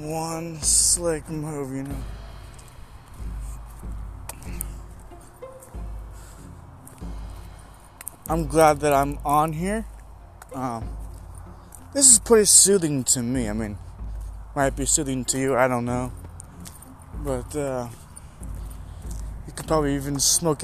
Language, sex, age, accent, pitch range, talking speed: English, male, 20-39, American, 100-150 Hz, 100 wpm